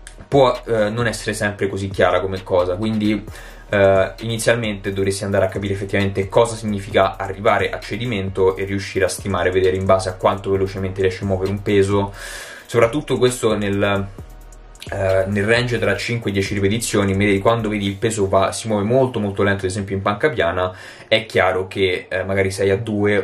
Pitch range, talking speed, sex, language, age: 95-110 Hz, 180 wpm, male, Italian, 20-39